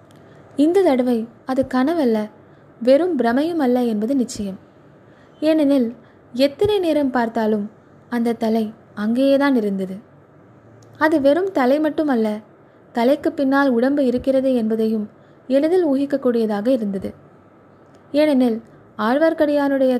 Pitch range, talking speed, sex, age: 225-280 Hz, 95 wpm, female, 20-39